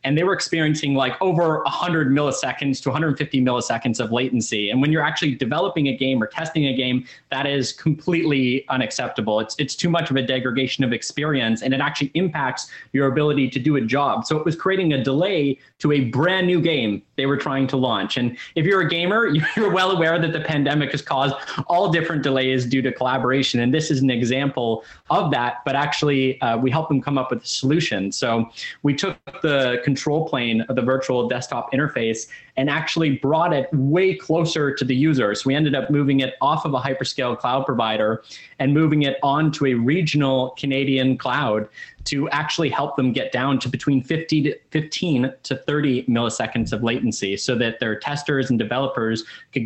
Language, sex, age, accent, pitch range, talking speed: English, male, 30-49, American, 125-150 Hz, 200 wpm